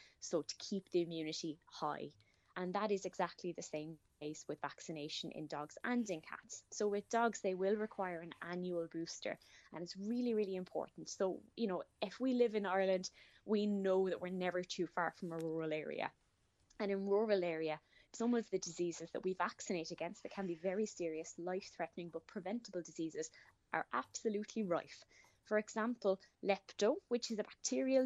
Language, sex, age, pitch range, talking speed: English, female, 20-39, 175-215 Hz, 180 wpm